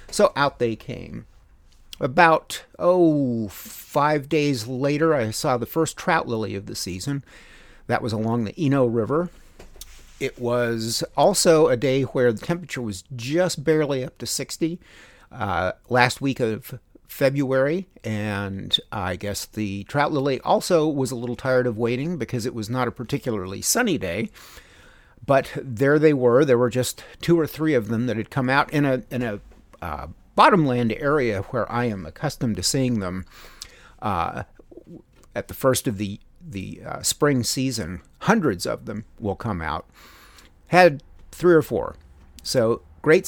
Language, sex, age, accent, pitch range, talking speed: English, male, 50-69, American, 105-140 Hz, 160 wpm